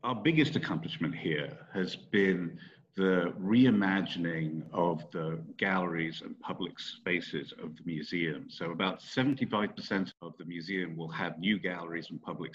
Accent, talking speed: British, 140 wpm